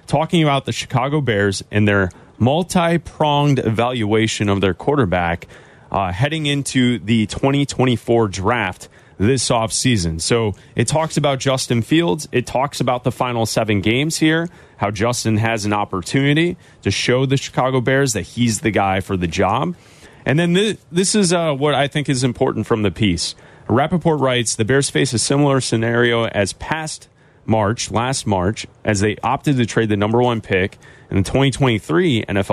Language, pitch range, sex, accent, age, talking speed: English, 105-140 Hz, male, American, 30-49, 165 wpm